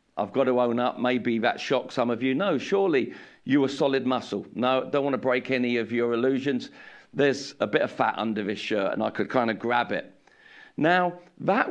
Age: 50-69